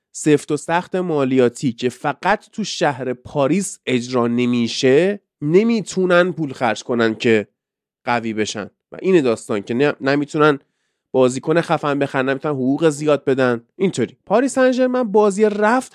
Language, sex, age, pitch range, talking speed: Persian, male, 30-49, 135-185 Hz, 130 wpm